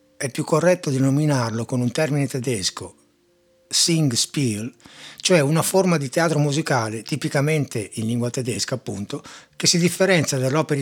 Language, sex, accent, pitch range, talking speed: Italian, male, native, 120-155 Hz, 135 wpm